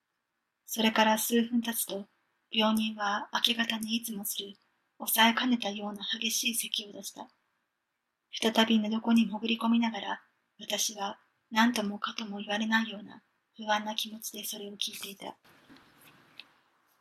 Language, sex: Japanese, female